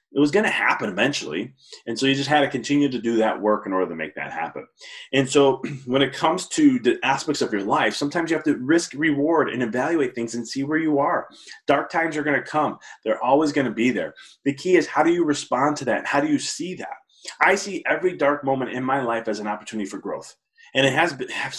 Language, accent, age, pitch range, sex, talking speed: English, American, 30-49, 125-165 Hz, male, 250 wpm